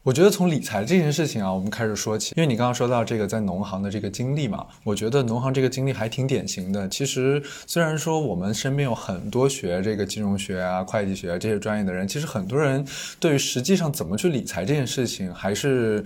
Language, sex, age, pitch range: Chinese, male, 20-39, 105-140 Hz